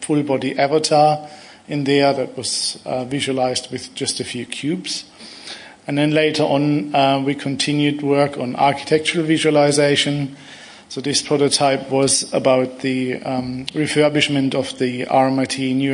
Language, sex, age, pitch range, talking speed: English, male, 50-69, 130-150 Hz, 135 wpm